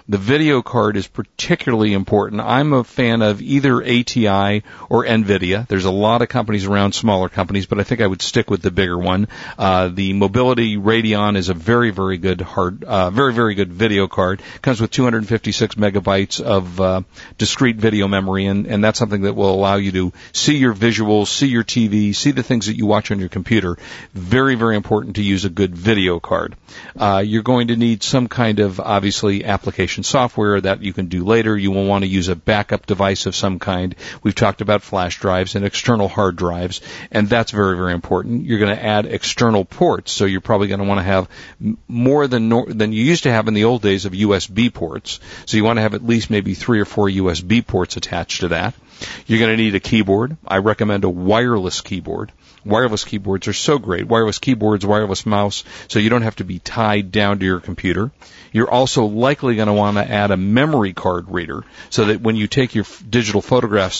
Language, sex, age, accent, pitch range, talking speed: English, male, 50-69, American, 95-115 Hz, 210 wpm